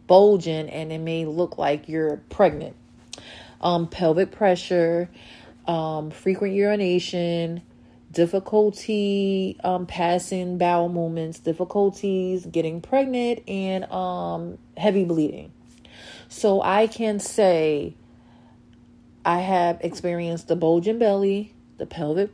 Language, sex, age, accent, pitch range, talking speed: English, female, 30-49, American, 155-190 Hz, 100 wpm